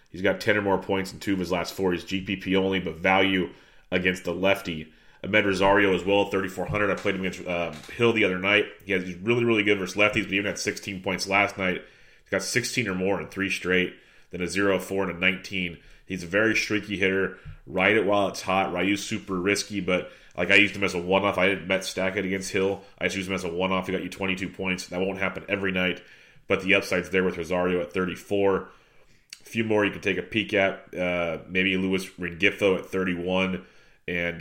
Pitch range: 90-100 Hz